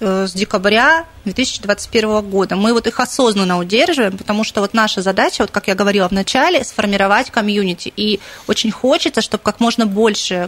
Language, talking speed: Russian, 160 wpm